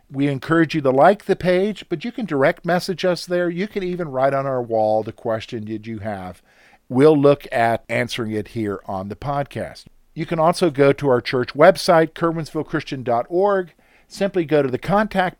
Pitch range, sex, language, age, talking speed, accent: 125-180 Hz, male, English, 50-69, 190 wpm, American